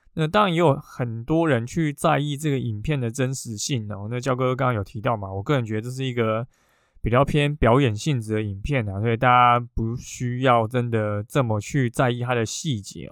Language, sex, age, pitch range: Chinese, male, 20-39, 115-145 Hz